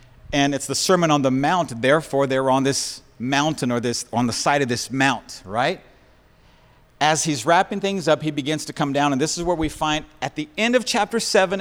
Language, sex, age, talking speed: English, male, 50-69, 220 wpm